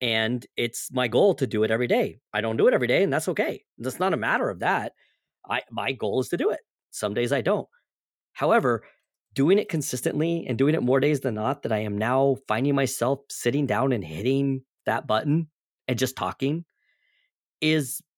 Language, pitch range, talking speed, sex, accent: English, 125-165 Hz, 205 wpm, male, American